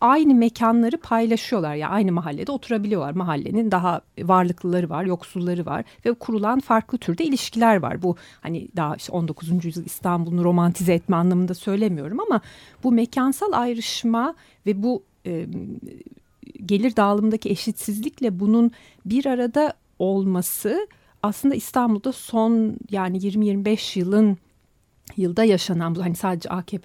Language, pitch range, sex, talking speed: Turkish, 175-235 Hz, female, 125 wpm